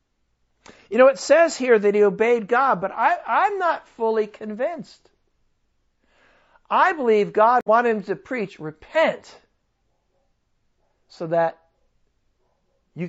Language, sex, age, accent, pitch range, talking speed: English, male, 60-79, American, 175-245 Hz, 115 wpm